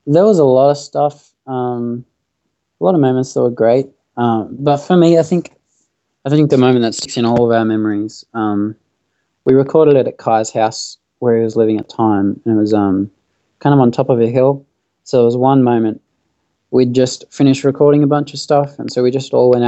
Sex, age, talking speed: male, 20-39, 225 wpm